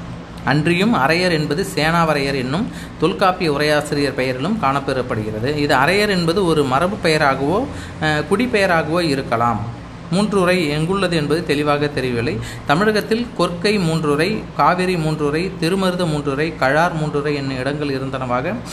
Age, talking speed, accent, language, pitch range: 30-49, 110 wpm, native, Tamil, 135-180 Hz